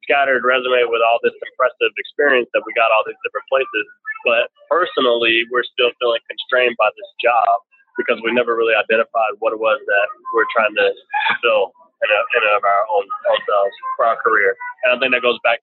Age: 20-39